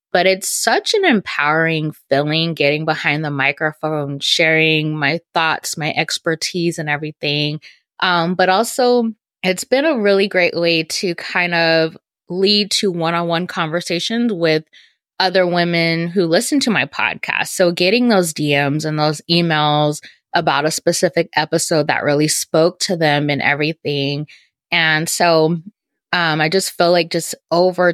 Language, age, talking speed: English, 20-39, 145 wpm